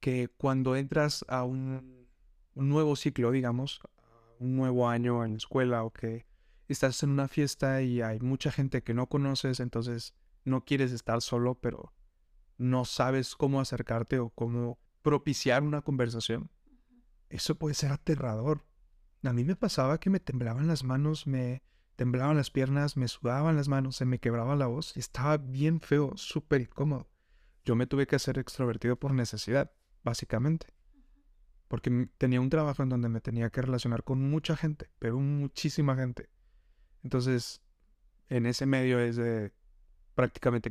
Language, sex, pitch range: Spanish, male, 115-140 Hz